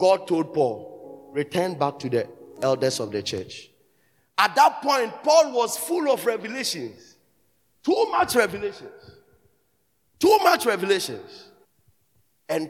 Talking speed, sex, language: 125 wpm, male, English